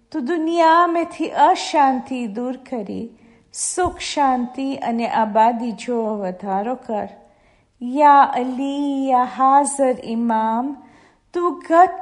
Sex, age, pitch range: female, 40-59, 235-295 Hz